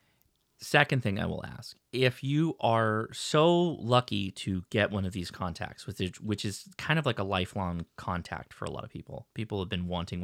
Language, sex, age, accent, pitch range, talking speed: English, male, 30-49, American, 90-120 Hz, 195 wpm